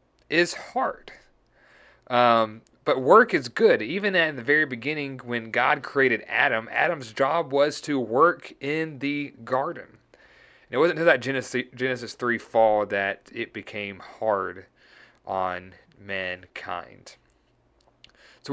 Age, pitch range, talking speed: 30-49, 115-140 Hz, 130 wpm